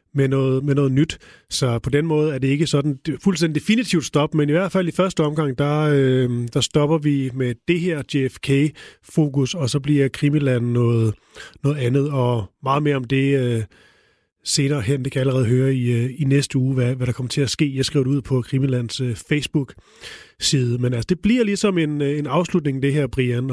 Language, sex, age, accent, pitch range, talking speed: Danish, male, 30-49, native, 125-150 Hz, 210 wpm